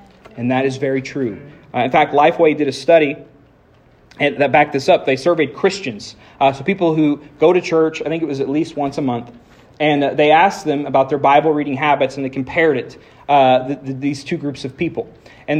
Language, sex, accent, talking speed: English, male, American, 215 wpm